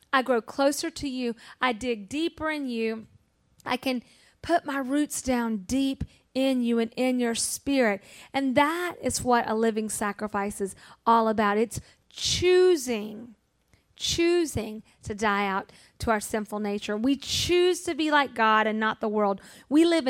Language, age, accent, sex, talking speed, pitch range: English, 40-59, American, female, 165 wpm, 230-325 Hz